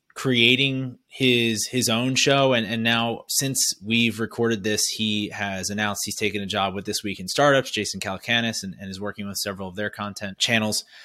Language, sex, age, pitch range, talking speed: English, male, 30-49, 100-115 Hz, 195 wpm